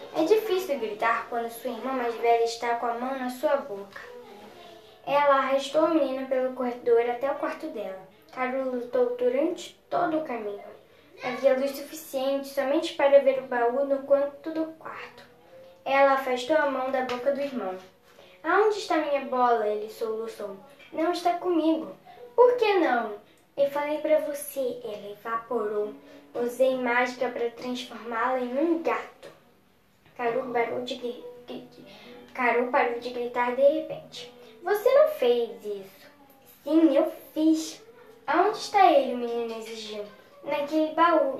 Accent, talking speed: Brazilian, 140 wpm